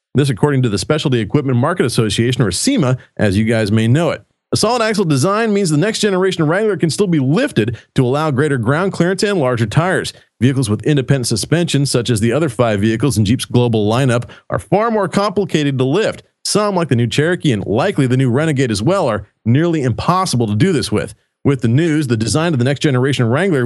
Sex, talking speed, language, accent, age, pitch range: male, 220 wpm, English, American, 40-59, 125-170 Hz